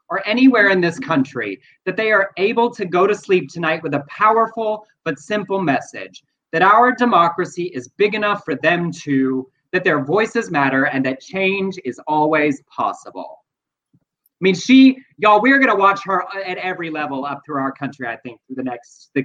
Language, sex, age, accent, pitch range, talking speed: English, male, 30-49, American, 160-210 Hz, 190 wpm